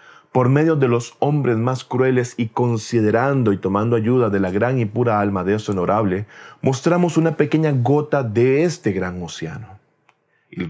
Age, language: 40-59, Spanish